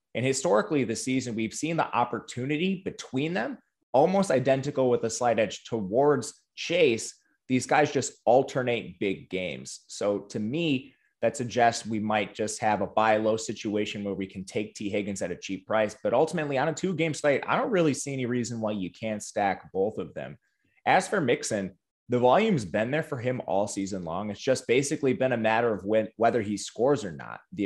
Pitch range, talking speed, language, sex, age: 105-140 Hz, 200 wpm, English, male, 20-39